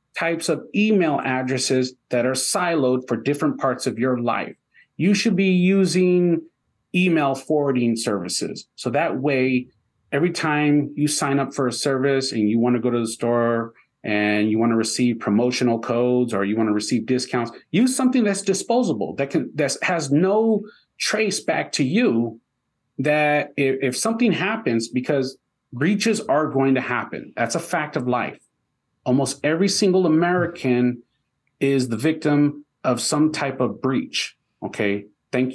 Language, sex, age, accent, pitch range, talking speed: English, male, 40-59, American, 125-170 Hz, 155 wpm